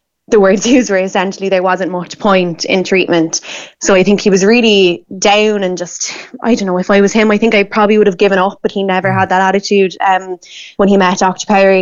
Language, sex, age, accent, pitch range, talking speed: English, female, 20-39, Irish, 185-205 Hz, 240 wpm